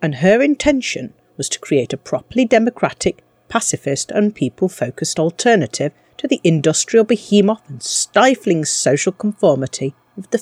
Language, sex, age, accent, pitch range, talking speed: English, female, 40-59, British, 140-210 Hz, 130 wpm